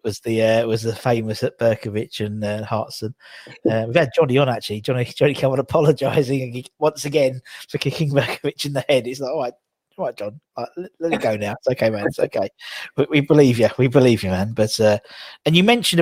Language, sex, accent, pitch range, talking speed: English, male, British, 110-140 Hz, 240 wpm